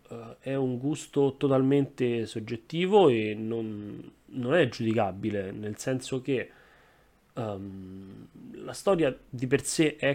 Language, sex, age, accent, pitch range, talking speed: Italian, male, 20-39, native, 105-135 Hz, 120 wpm